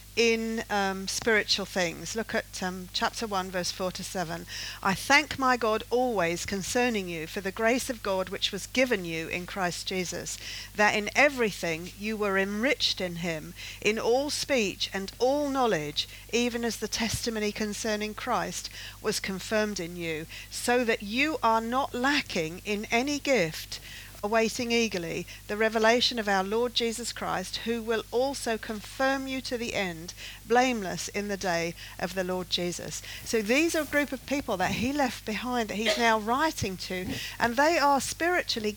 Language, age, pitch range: English, 50-69, 190-255 Hz